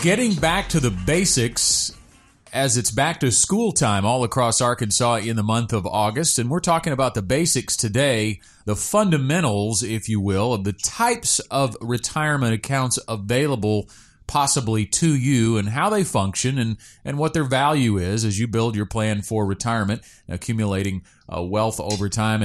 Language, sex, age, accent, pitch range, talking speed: English, male, 30-49, American, 105-135 Hz, 170 wpm